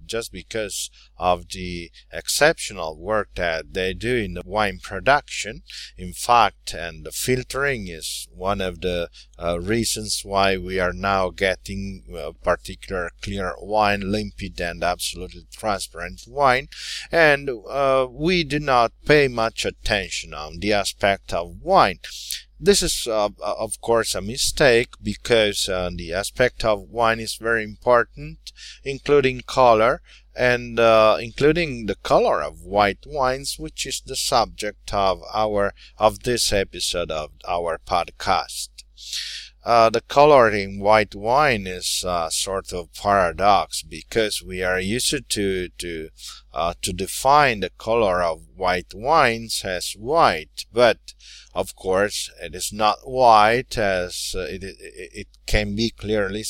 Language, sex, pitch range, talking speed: English, male, 90-120 Hz, 140 wpm